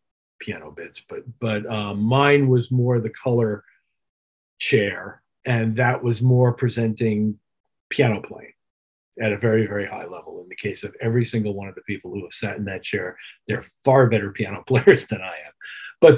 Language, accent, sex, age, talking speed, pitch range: English, American, male, 50-69, 180 wpm, 105-145 Hz